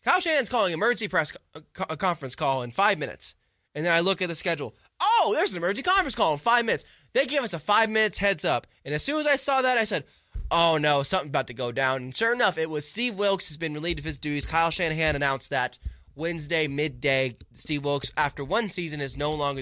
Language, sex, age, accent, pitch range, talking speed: English, male, 10-29, American, 130-205 Hz, 240 wpm